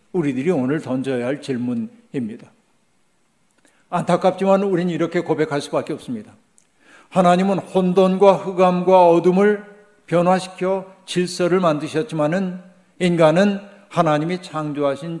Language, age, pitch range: Korean, 50-69, 150-190 Hz